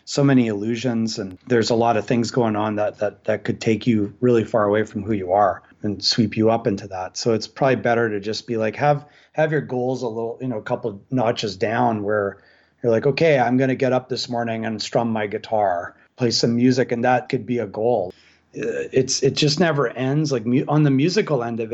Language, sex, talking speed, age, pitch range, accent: English, male, 235 wpm, 30-49, 110-130 Hz, American